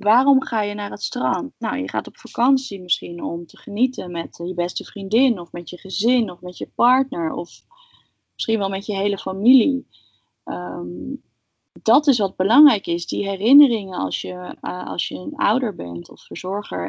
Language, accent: Dutch, Dutch